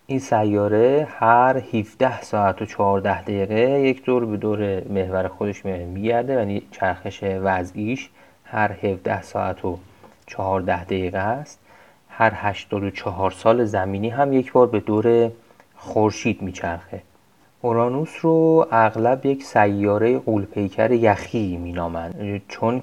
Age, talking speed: 30-49, 120 wpm